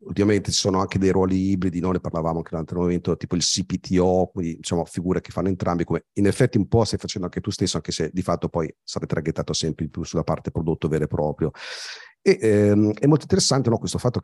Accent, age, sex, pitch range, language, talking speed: native, 40-59, male, 85-100 Hz, Italian, 250 wpm